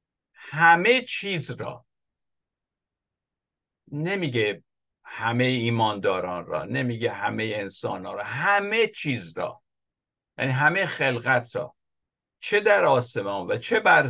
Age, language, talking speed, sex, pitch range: 50-69, Persian, 100 wpm, male, 125-170 Hz